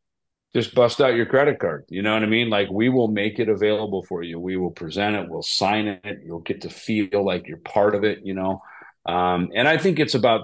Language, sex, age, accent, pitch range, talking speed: English, male, 40-59, American, 95-125 Hz, 245 wpm